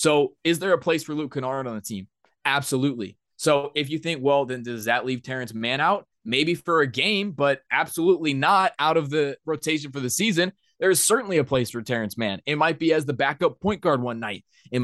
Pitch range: 125-160 Hz